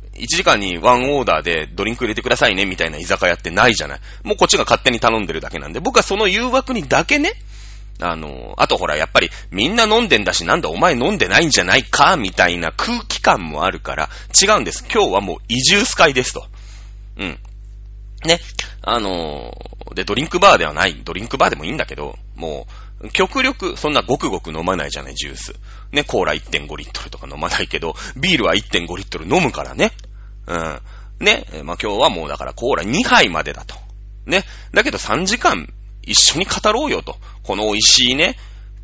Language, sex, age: Japanese, male, 30-49